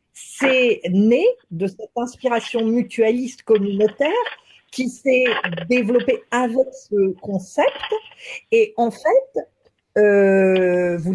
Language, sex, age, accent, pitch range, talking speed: French, female, 50-69, French, 195-260 Hz, 95 wpm